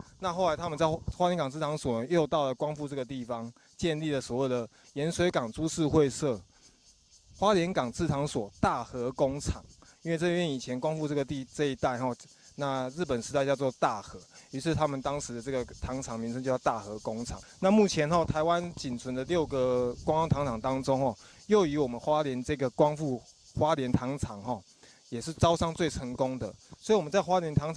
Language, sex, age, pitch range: Chinese, male, 20-39, 125-160 Hz